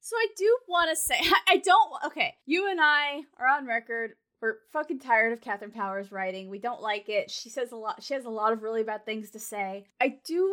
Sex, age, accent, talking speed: female, 20-39, American, 240 wpm